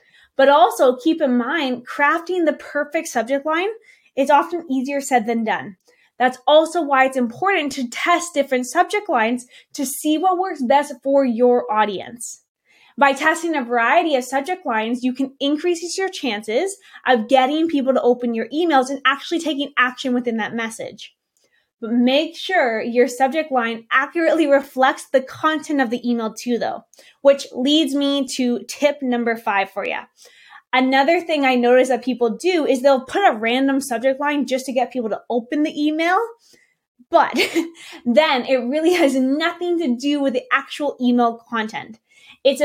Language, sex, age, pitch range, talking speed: English, female, 20-39, 245-315 Hz, 170 wpm